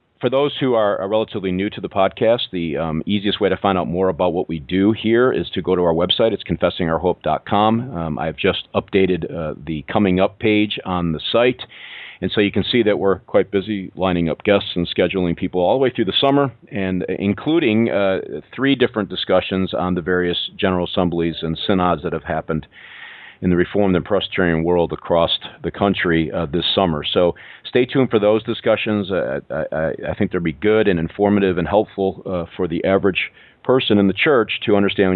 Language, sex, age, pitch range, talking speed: English, male, 40-59, 85-105 Hz, 205 wpm